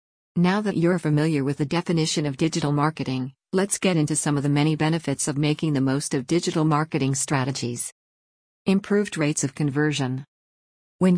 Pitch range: 140-165 Hz